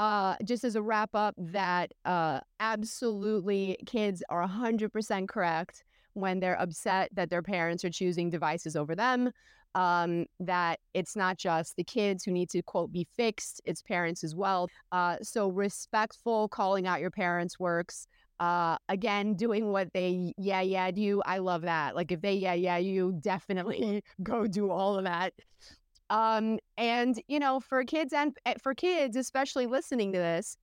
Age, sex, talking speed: 30-49, female, 165 wpm